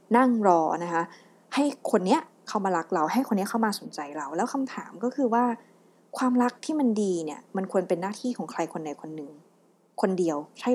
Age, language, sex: 20-39, Thai, female